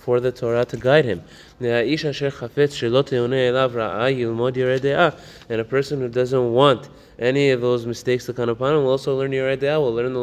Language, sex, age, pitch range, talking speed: English, male, 20-39, 120-140 Hz, 165 wpm